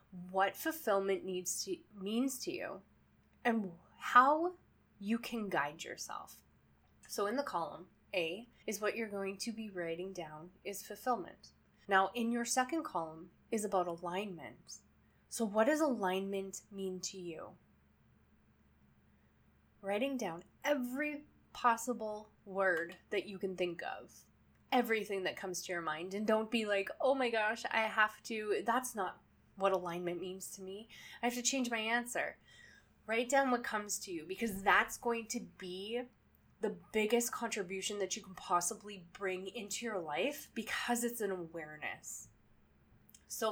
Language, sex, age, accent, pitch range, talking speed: English, female, 10-29, American, 190-240 Hz, 150 wpm